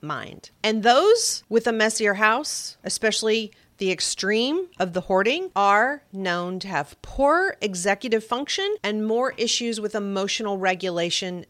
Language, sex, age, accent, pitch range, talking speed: English, female, 40-59, American, 185-240 Hz, 135 wpm